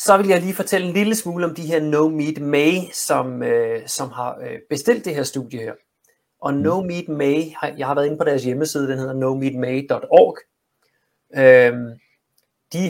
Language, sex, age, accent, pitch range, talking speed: Danish, male, 30-49, native, 130-165 Hz, 185 wpm